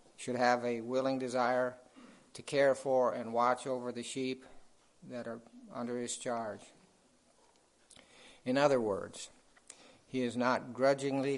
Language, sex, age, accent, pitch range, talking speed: English, male, 50-69, American, 115-125 Hz, 130 wpm